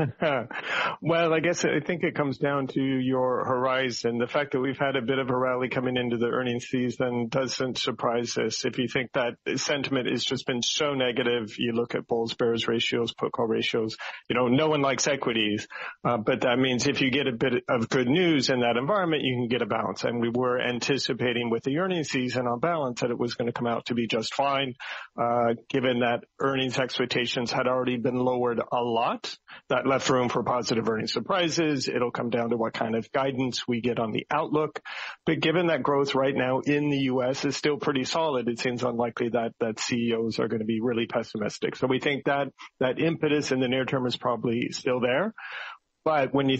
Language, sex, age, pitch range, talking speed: English, male, 40-59, 120-140 Hz, 215 wpm